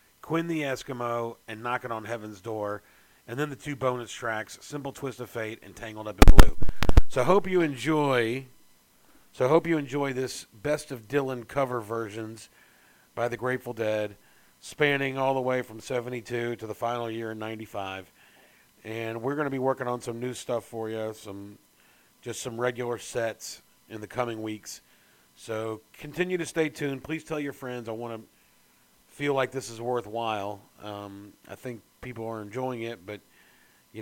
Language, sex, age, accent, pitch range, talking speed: English, male, 40-59, American, 110-135 Hz, 185 wpm